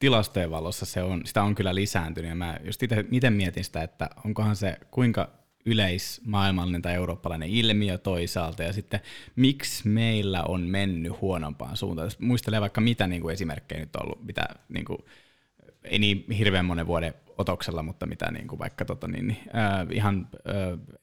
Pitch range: 95-115 Hz